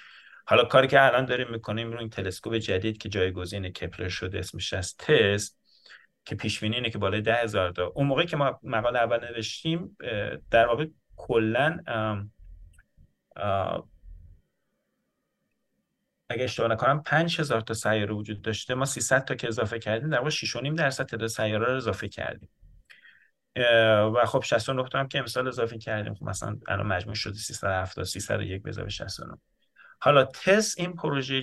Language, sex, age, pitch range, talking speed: Persian, male, 30-49, 95-125 Hz, 150 wpm